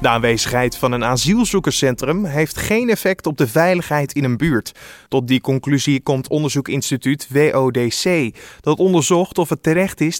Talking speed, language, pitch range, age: 155 wpm, Dutch, 140-180 Hz, 20-39